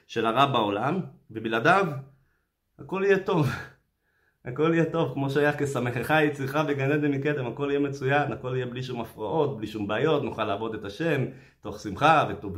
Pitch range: 95-140 Hz